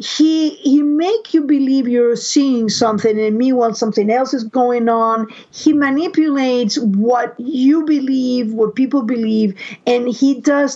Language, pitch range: English, 220-285 Hz